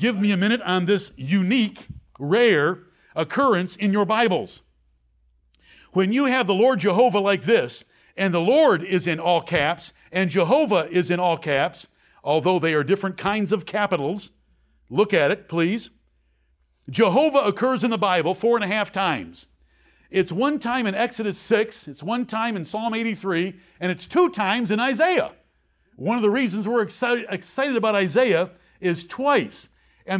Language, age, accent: English, 60-79, American